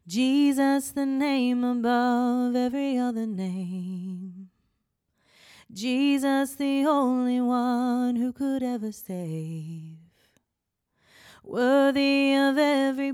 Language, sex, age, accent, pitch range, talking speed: English, female, 30-49, American, 235-285 Hz, 80 wpm